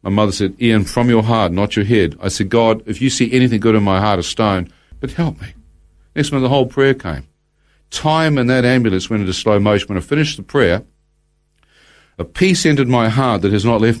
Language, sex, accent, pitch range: English, male, Australian, 100-135 Hz